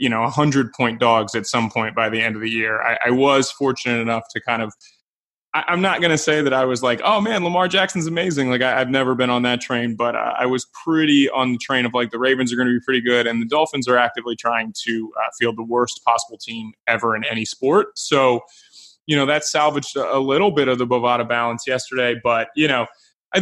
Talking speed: 250 wpm